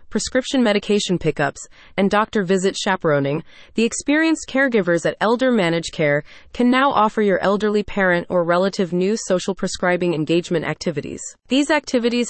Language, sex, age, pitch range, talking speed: English, female, 30-49, 170-225 Hz, 140 wpm